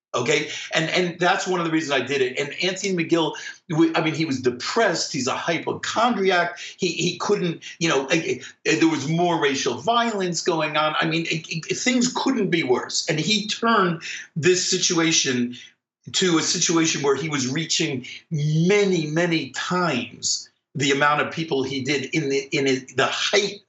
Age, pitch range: 50-69, 150-190 Hz